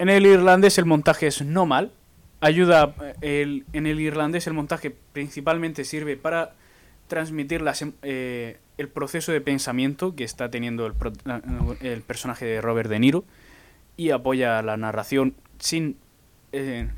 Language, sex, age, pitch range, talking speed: Spanish, male, 20-39, 125-160 Hz, 150 wpm